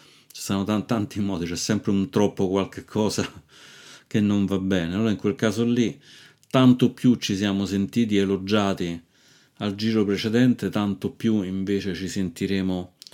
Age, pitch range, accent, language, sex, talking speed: 30-49, 95-110 Hz, native, Italian, male, 155 wpm